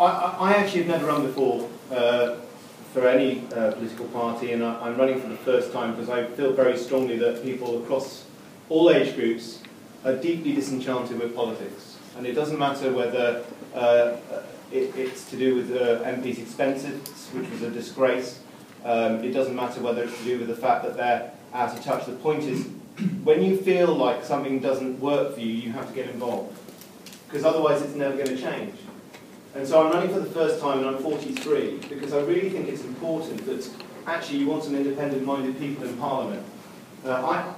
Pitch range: 125-155 Hz